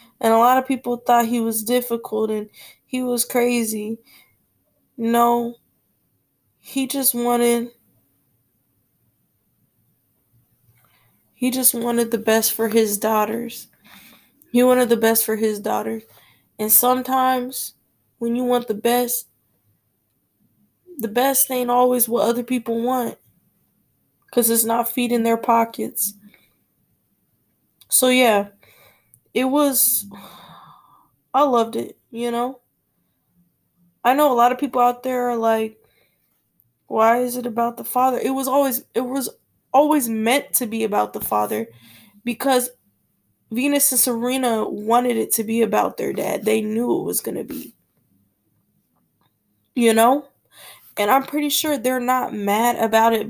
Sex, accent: female, American